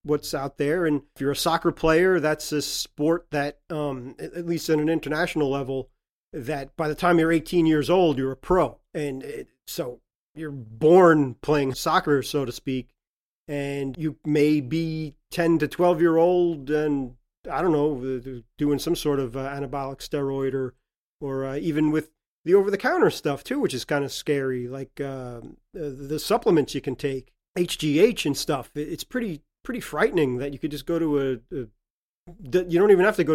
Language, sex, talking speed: English, male, 190 wpm